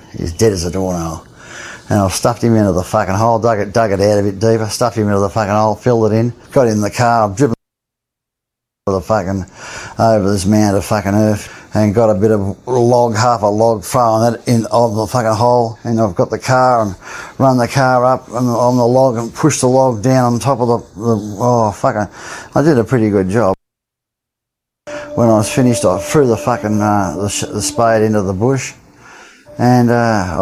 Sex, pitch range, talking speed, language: male, 100-120 Hz, 215 wpm, English